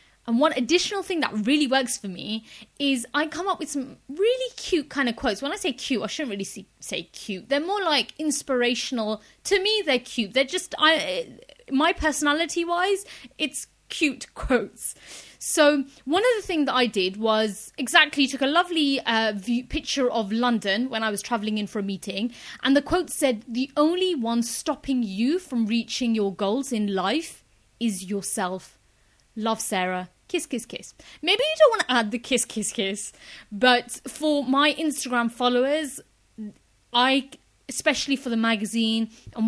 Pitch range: 220-300 Hz